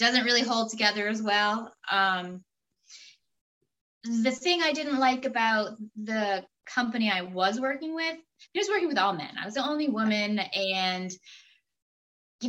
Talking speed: 155 wpm